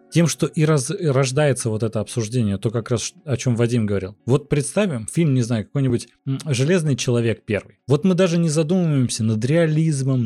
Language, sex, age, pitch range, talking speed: Russian, male, 20-39, 110-140 Hz, 180 wpm